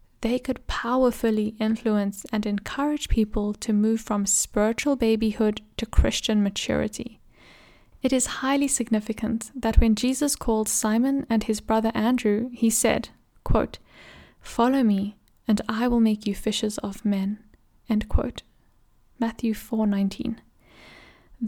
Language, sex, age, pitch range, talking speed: English, female, 10-29, 215-250 Hz, 125 wpm